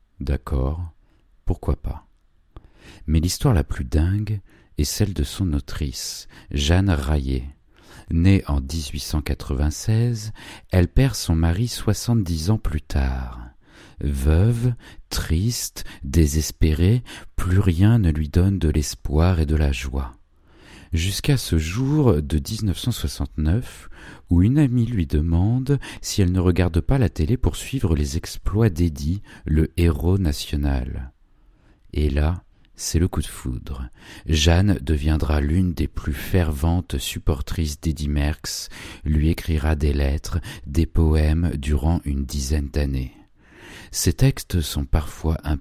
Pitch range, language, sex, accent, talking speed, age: 75-95 Hz, French, male, French, 125 wpm, 40-59